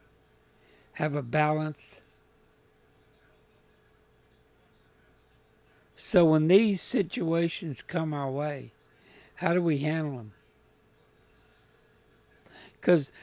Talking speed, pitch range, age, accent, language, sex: 75 wpm, 140-175 Hz, 60-79, American, English, male